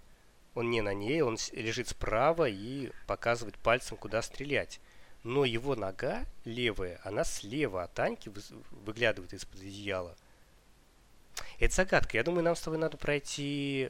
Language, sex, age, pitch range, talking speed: Russian, male, 20-39, 100-140 Hz, 140 wpm